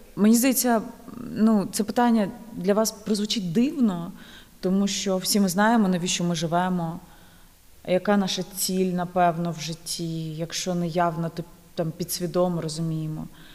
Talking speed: 130 wpm